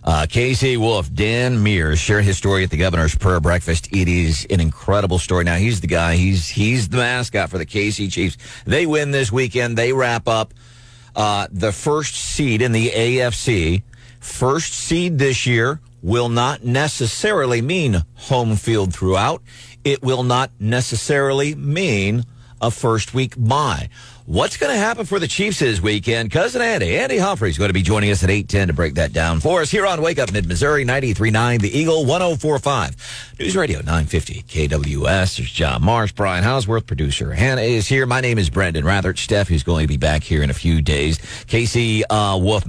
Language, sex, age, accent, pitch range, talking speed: English, male, 50-69, American, 90-120 Hz, 185 wpm